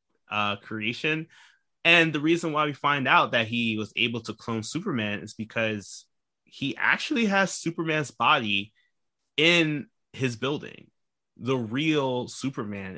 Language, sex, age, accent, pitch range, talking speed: English, male, 20-39, American, 110-145 Hz, 135 wpm